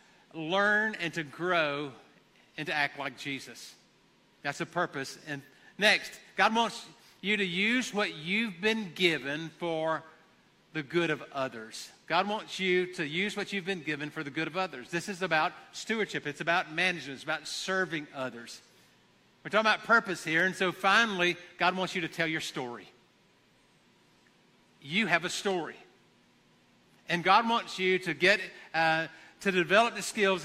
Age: 50-69